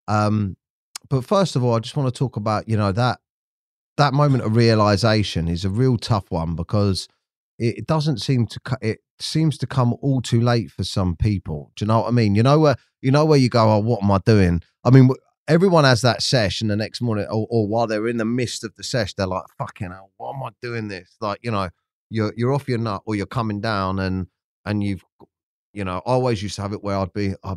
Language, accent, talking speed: English, British, 245 wpm